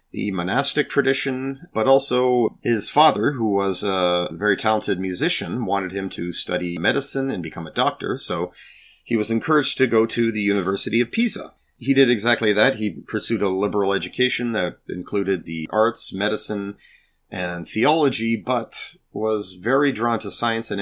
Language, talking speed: English, 160 wpm